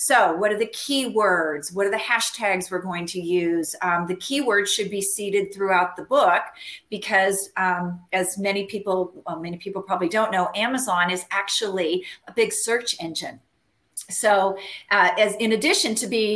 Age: 40-59